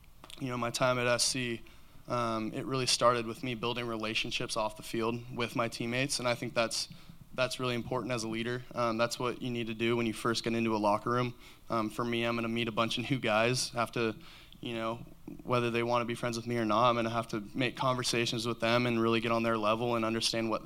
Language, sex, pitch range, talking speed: English, male, 110-125 Hz, 260 wpm